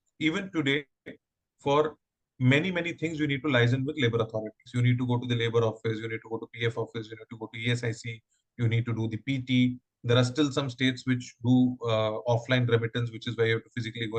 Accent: Indian